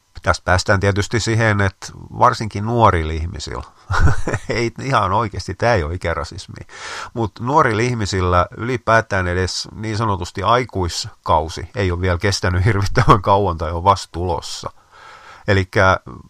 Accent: native